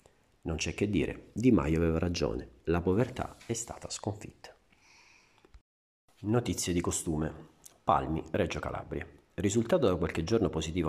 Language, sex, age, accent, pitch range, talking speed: Italian, male, 40-59, native, 80-105 Hz, 130 wpm